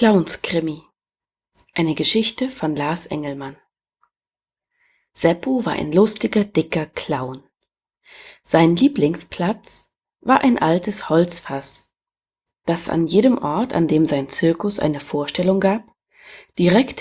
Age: 30-49